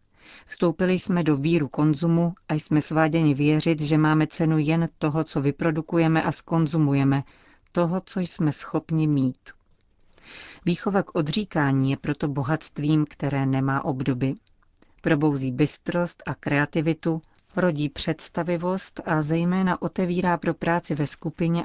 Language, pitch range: Czech, 140-170 Hz